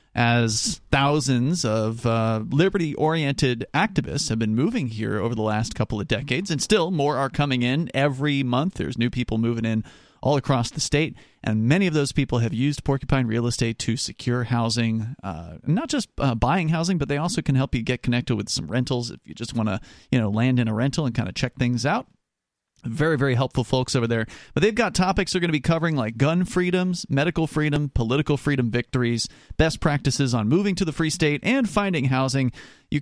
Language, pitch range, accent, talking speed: English, 120-160 Hz, American, 210 wpm